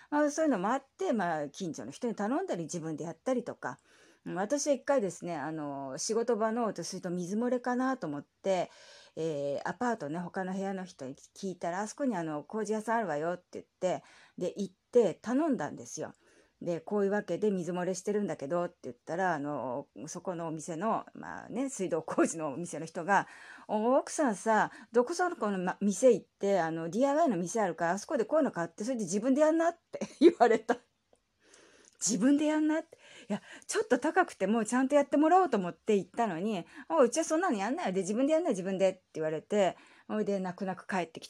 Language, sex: Japanese, female